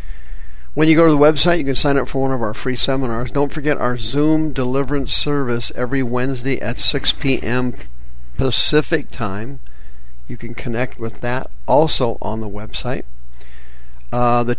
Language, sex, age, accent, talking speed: English, male, 50-69, American, 165 wpm